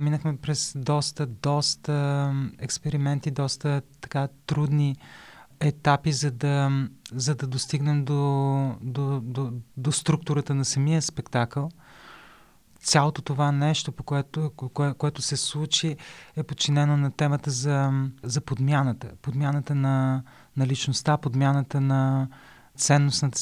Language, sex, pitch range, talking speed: Bulgarian, male, 135-145 Hz, 115 wpm